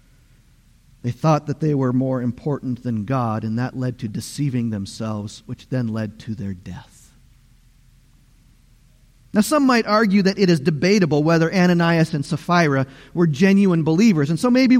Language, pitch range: English, 130-205 Hz